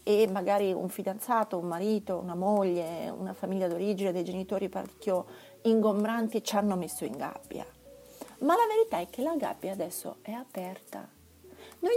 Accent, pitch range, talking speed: native, 195-290 Hz, 155 wpm